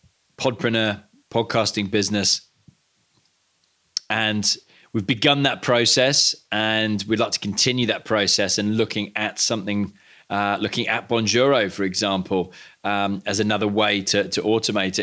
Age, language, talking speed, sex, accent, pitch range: 20-39, English, 130 wpm, male, British, 100-120 Hz